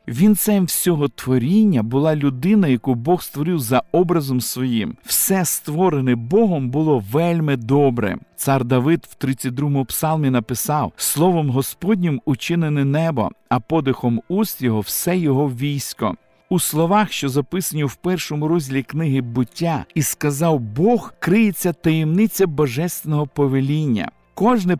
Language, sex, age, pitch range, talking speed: Ukrainian, male, 50-69, 135-175 Hz, 125 wpm